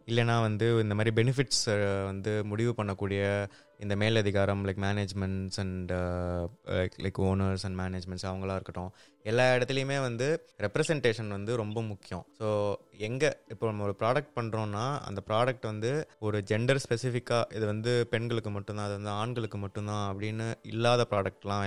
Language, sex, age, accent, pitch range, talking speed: Tamil, male, 20-39, native, 100-120 Hz, 140 wpm